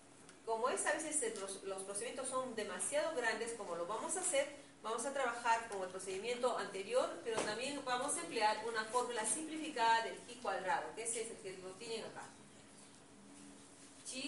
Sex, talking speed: female, 170 wpm